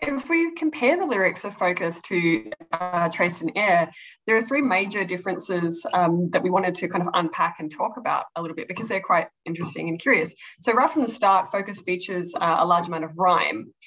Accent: Australian